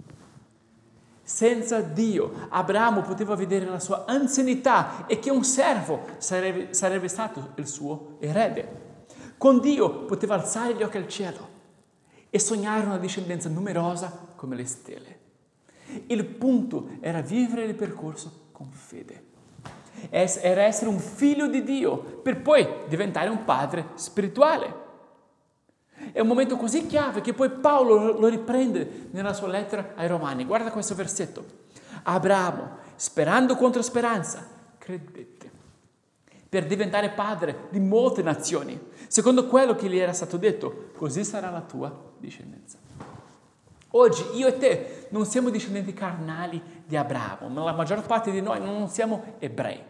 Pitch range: 175-240 Hz